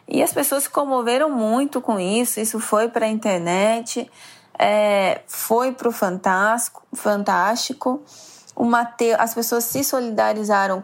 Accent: Brazilian